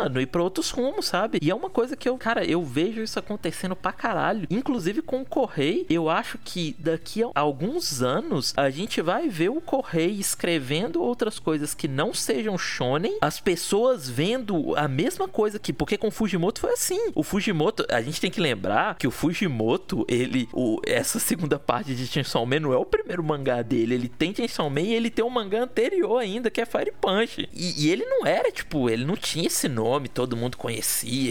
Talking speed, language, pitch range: 200 wpm, Portuguese, 150-230 Hz